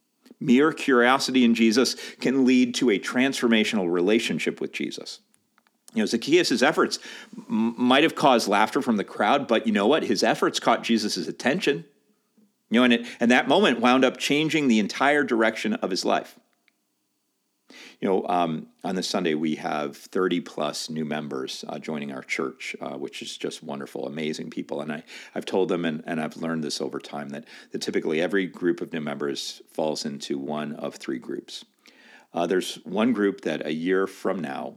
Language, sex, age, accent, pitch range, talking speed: English, male, 50-69, American, 90-140 Hz, 185 wpm